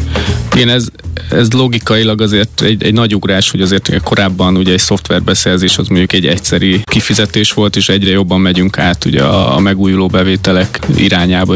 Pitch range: 90-105 Hz